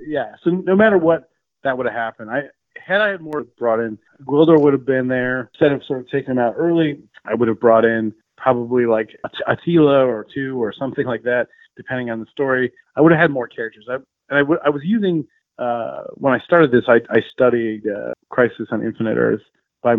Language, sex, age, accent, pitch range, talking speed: English, male, 30-49, American, 115-140 Hz, 220 wpm